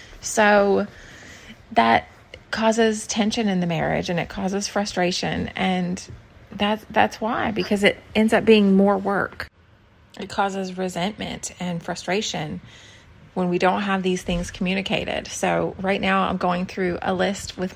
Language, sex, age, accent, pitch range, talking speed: English, female, 30-49, American, 180-215 Hz, 145 wpm